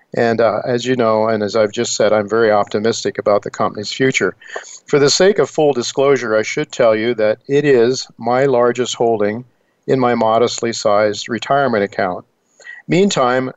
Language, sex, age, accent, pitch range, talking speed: English, male, 50-69, American, 110-135 Hz, 175 wpm